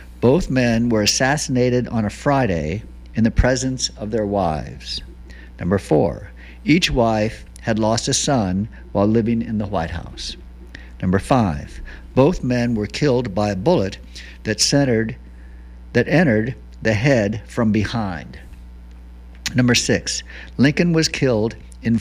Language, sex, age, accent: English, male, 60-79, American